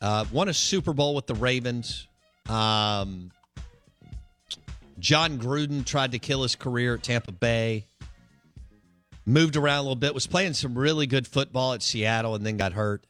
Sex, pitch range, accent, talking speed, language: male, 95-130 Hz, American, 165 wpm, English